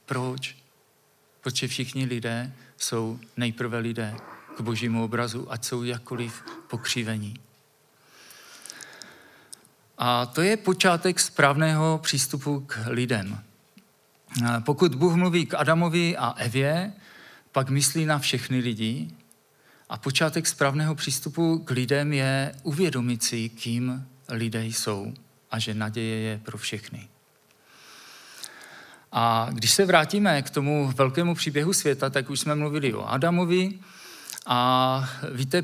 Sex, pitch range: male, 120-160 Hz